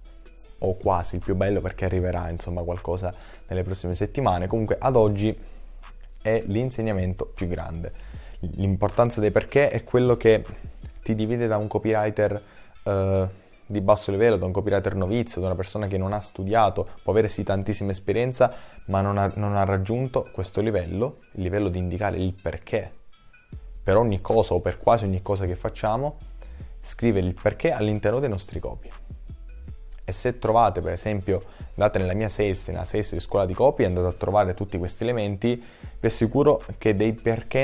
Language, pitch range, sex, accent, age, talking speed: Italian, 90-105 Hz, male, native, 20-39, 170 wpm